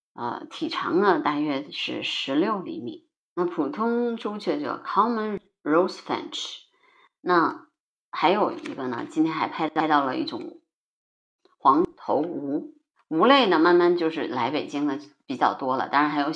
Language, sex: Chinese, female